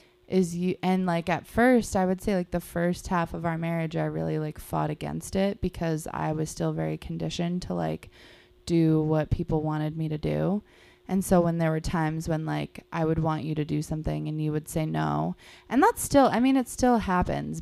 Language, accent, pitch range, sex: English, American, 150-180 Hz, female